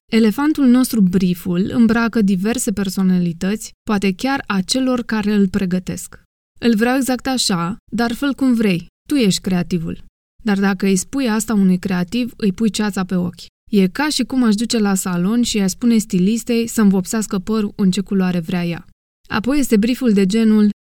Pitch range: 190-230 Hz